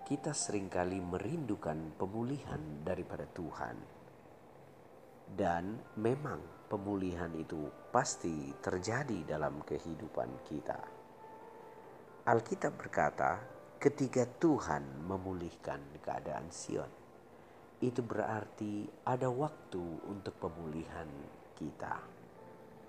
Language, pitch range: Indonesian, 85-125 Hz